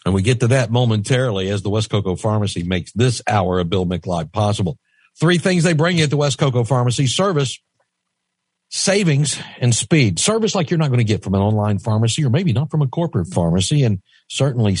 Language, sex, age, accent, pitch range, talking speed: English, male, 60-79, American, 95-130 Hz, 210 wpm